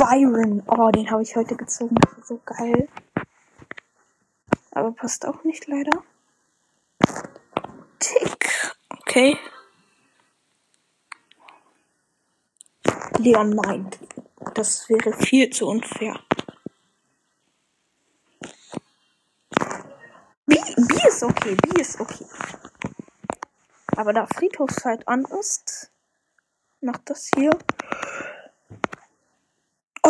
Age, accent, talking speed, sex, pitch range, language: 10-29, German, 80 wpm, female, 235-310 Hz, German